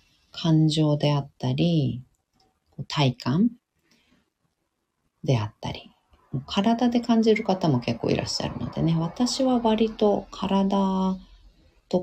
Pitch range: 125-190 Hz